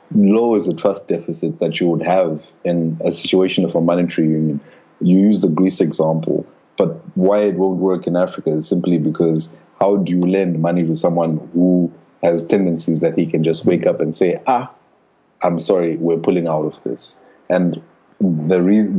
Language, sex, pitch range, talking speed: English, male, 80-95 Hz, 190 wpm